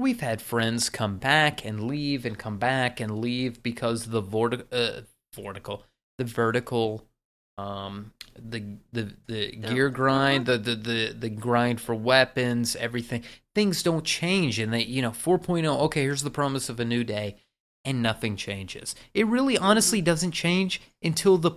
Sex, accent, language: male, American, English